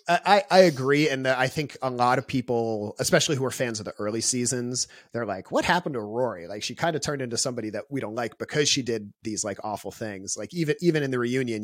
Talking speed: 245 wpm